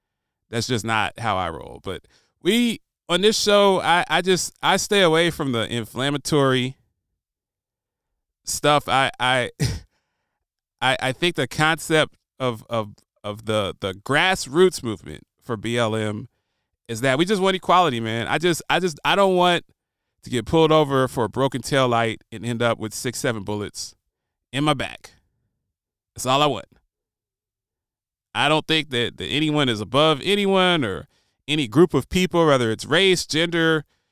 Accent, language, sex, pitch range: American, English, male, 110-160 Hz